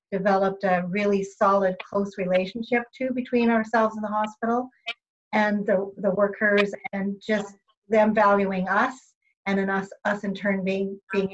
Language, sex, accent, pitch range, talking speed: English, female, American, 190-215 Hz, 155 wpm